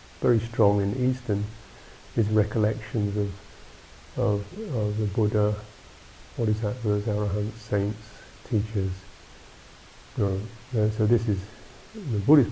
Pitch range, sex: 100-115 Hz, male